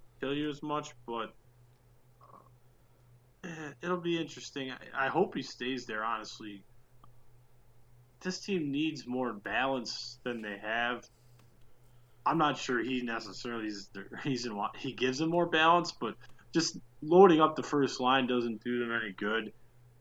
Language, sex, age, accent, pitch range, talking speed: English, male, 20-39, American, 120-135 Hz, 150 wpm